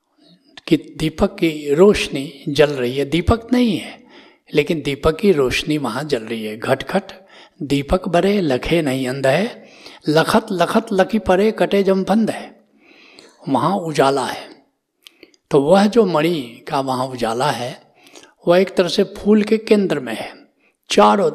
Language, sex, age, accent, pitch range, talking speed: Hindi, male, 60-79, native, 135-195 Hz, 155 wpm